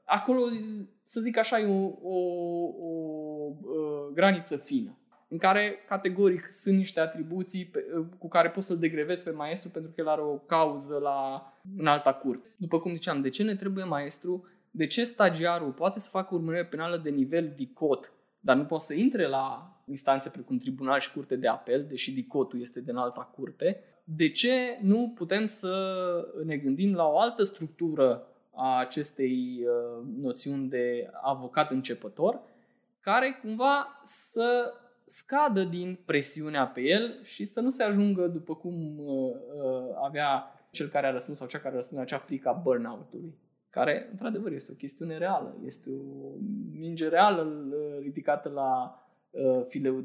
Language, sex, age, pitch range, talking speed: Romanian, male, 20-39, 140-195 Hz, 155 wpm